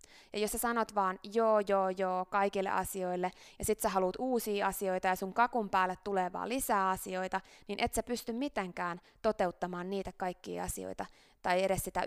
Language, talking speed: Finnish, 180 wpm